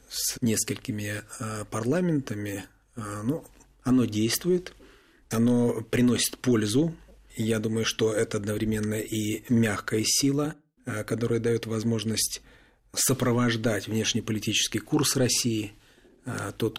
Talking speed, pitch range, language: 90 wpm, 105-125 Hz, Russian